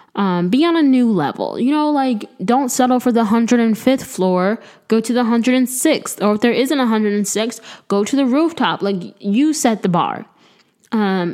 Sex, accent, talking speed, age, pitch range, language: female, American, 185 wpm, 10-29, 175-225 Hz, English